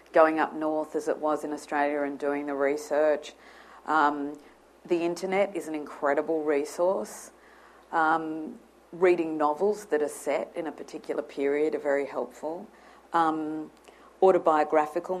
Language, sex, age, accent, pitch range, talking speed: English, female, 40-59, Australian, 150-185 Hz, 135 wpm